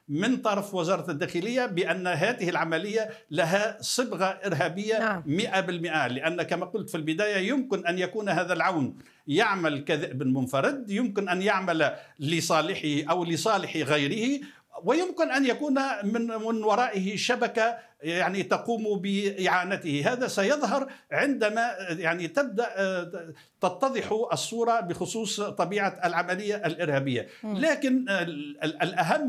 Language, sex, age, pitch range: Arabic, male, 60-79, 175-230 Hz